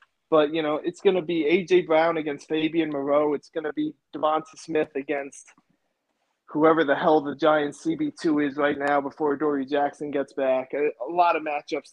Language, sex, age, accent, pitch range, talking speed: English, male, 20-39, American, 150-195 Hz, 185 wpm